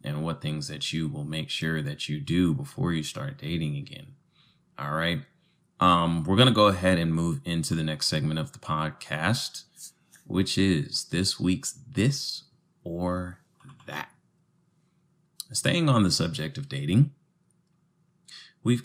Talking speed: 150 wpm